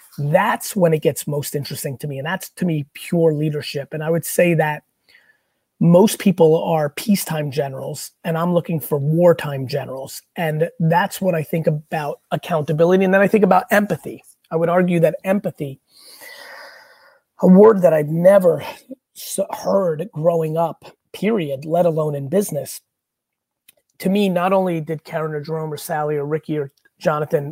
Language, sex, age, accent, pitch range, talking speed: English, male, 30-49, American, 155-195 Hz, 165 wpm